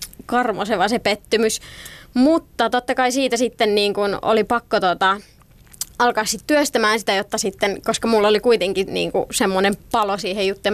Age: 20-39